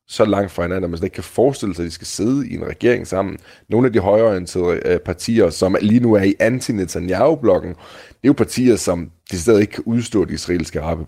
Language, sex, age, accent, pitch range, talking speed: Danish, male, 30-49, native, 90-110 Hz, 225 wpm